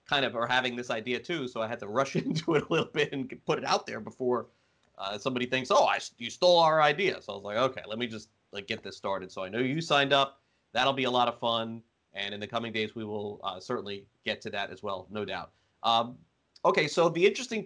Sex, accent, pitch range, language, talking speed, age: male, American, 110-140 Hz, English, 255 wpm, 30-49